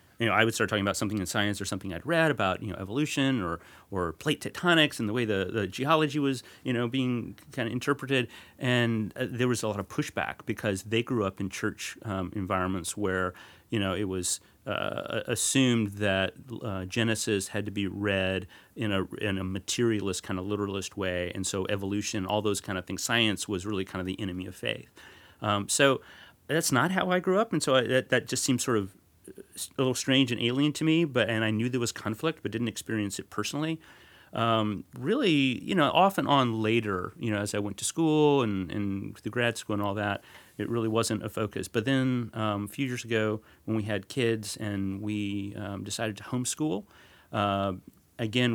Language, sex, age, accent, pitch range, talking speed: English, male, 30-49, American, 100-120 Hz, 215 wpm